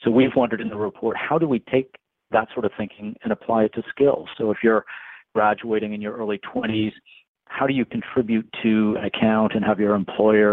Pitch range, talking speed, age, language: 105-125 Hz, 215 wpm, 40-59, English